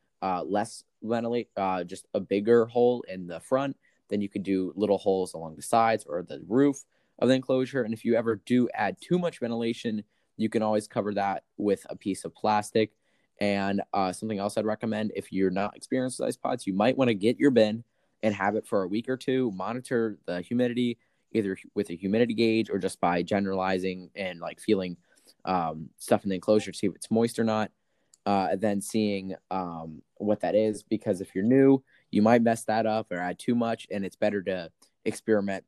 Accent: American